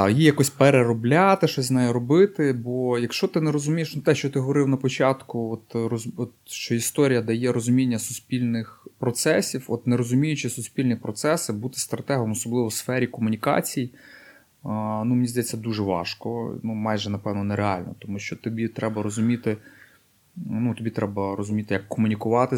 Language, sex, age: Ukrainian, male, 20-39